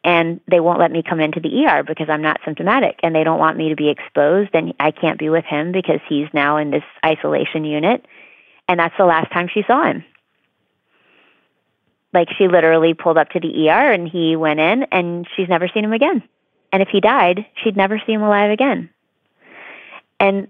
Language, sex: English, female